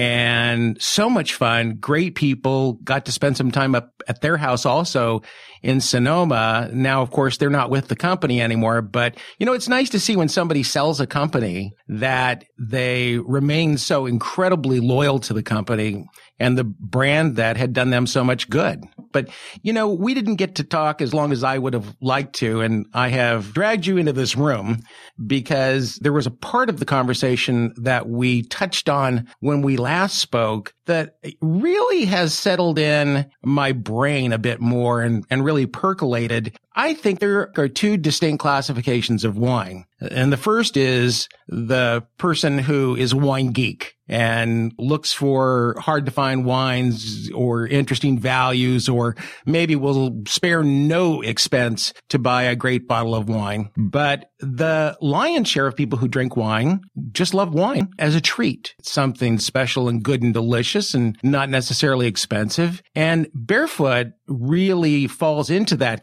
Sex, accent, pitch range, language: male, American, 120-150 Hz, English